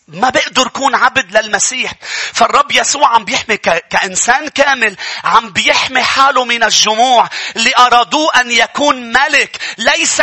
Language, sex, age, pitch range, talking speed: English, male, 40-59, 285-345 Hz, 135 wpm